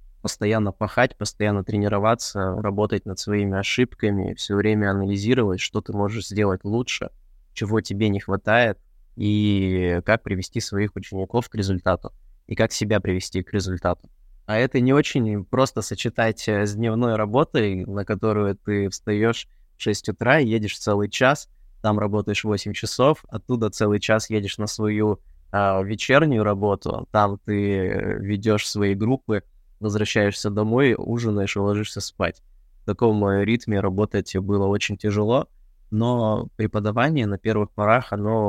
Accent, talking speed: native, 140 wpm